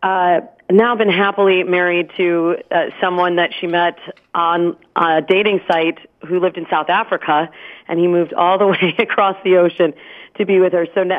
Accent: American